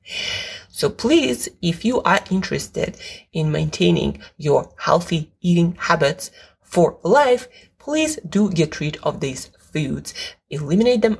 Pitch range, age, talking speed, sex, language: 145-210 Hz, 20-39, 125 wpm, female, English